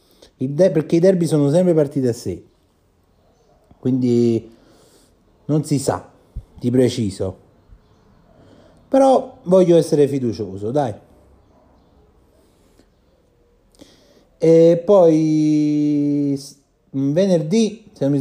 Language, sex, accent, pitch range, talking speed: Italian, male, native, 115-155 Hz, 85 wpm